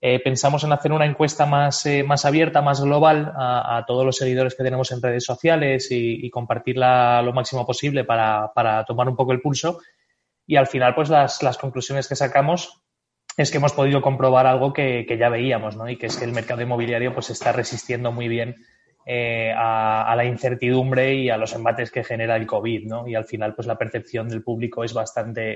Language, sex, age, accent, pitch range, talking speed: Spanish, male, 20-39, Spanish, 115-135 Hz, 215 wpm